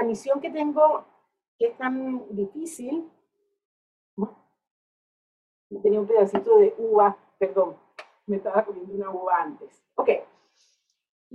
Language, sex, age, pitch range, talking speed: English, female, 40-59, 210-300 Hz, 115 wpm